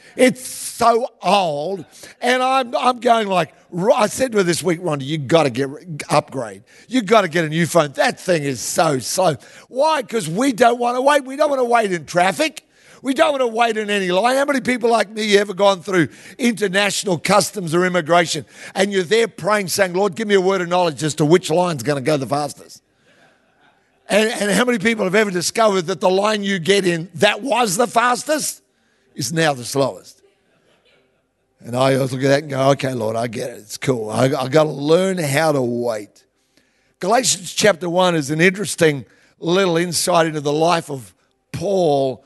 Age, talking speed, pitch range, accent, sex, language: 50-69, 205 wpm, 150-210 Hz, Australian, male, English